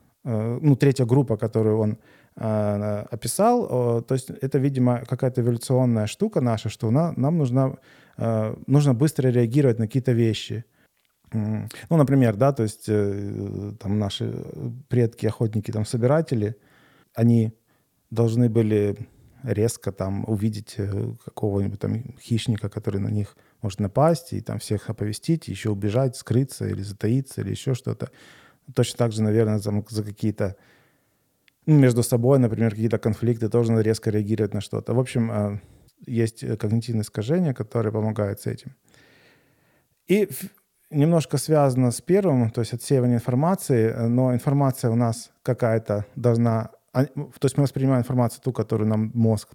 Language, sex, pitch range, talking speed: Ukrainian, male, 110-135 Hz, 130 wpm